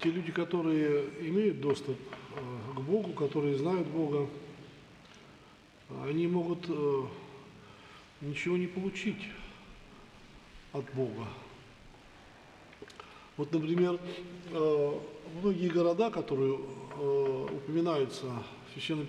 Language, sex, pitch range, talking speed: Russian, male, 135-170 Hz, 80 wpm